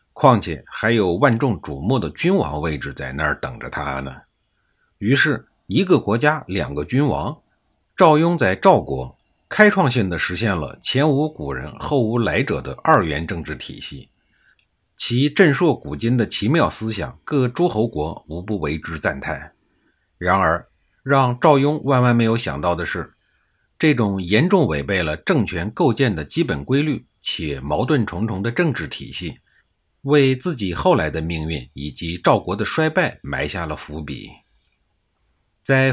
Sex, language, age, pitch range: male, Chinese, 50-69, 80-135 Hz